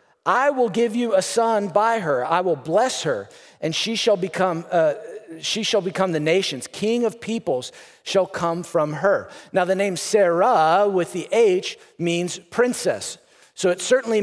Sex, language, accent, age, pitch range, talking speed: male, English, American, 40-59, 175-215 Hz, 175 wpm